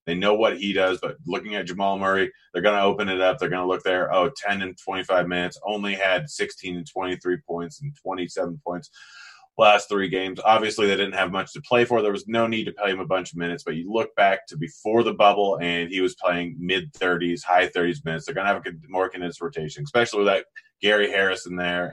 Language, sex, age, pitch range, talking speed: English, male, 30-49, 90-110 Hz, 240 wpm